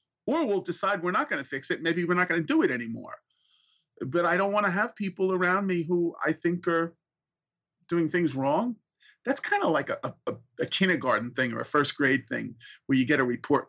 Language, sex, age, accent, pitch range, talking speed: English, male, 40-59, American, 140-195 Hz, 230 wpm